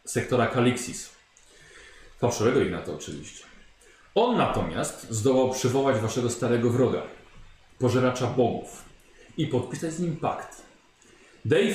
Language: Polish